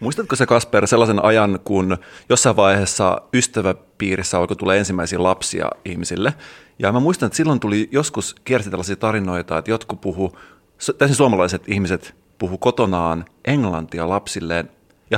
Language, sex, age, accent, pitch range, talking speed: Finnish, male, 30-49, native, 95-115 Hz, 140 wpm